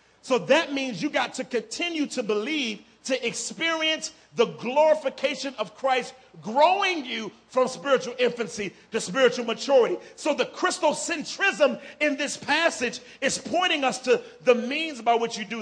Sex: male